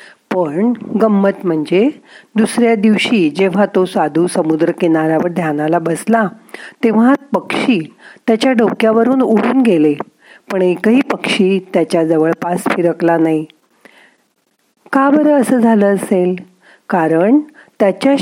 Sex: female